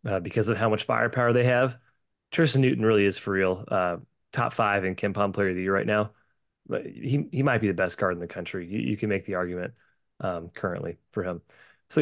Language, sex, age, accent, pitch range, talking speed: English, male, 20-39, American, 105-145 Hz, 240 wpm